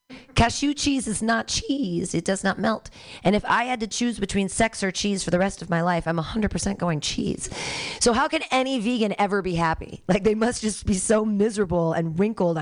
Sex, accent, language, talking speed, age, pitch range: female, American, English, 220 wpm, 40-59, 170-230 Hz